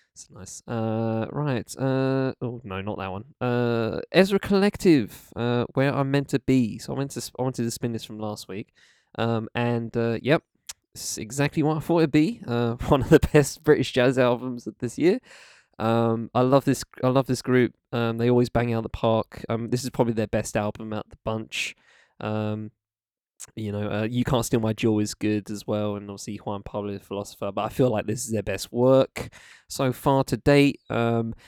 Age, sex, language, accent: 20-39, male, English, British